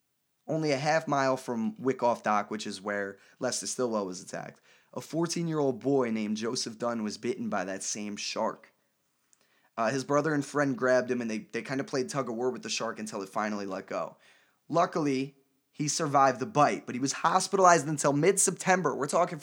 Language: English